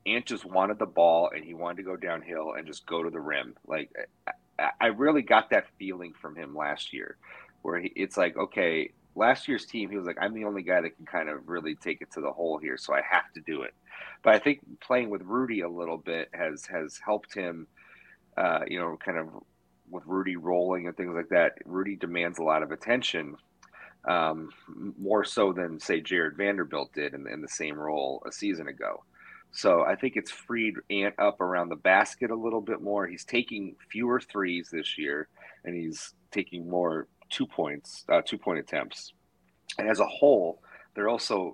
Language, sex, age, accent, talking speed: English, male, 30-49, American, 205 wpm